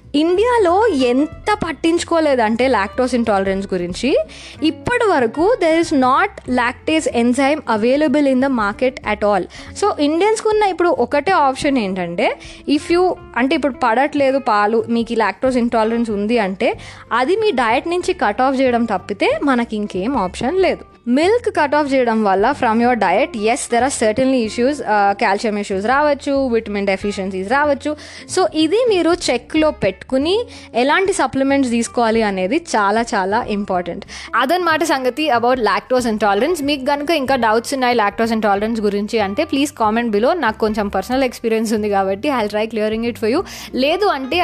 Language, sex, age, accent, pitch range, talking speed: Telugu, female, 20-39, native, 215-295 Hz, 155 wpm